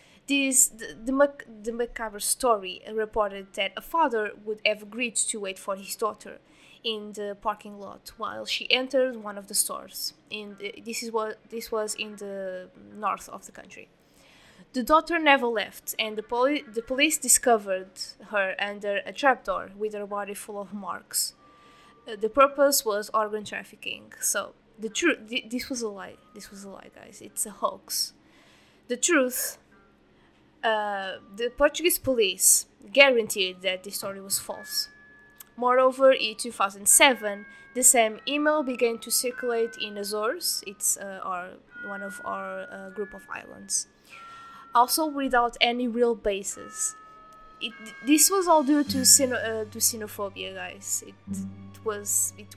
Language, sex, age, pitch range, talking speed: English, female, 20-39, 200-260 Hz, 155 wpm